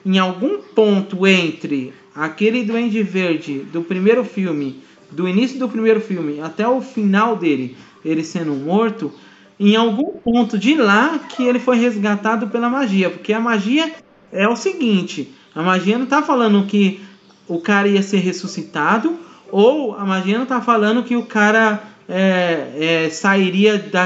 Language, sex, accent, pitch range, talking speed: Portuguese, male, Brazilian, 180-235 Hz, 150 wpm